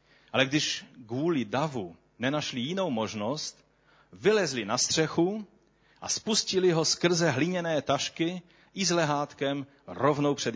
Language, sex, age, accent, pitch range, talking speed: Czech, male, 40-59, native, 125-170 Hz, 120 wpm